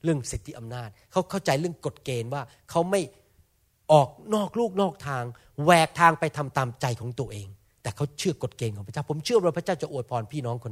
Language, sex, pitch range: Thai, male, 120-185 Hz